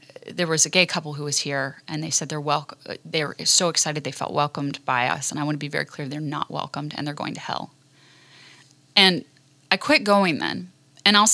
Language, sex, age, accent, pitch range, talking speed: English, female, 20-39, American, 150-195 Hz, 235 wpm